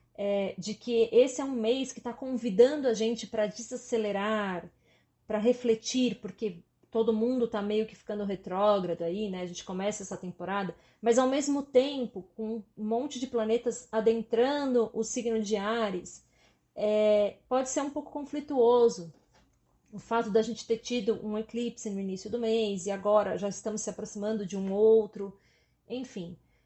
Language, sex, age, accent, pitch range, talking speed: Portuguese, female, 30-49, Brazilian, 205-250 Hz, 165 wpm